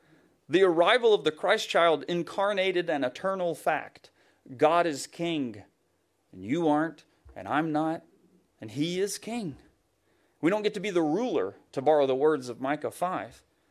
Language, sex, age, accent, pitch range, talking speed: English, male, 40-59, American, 155-210 Hz, 160 wpm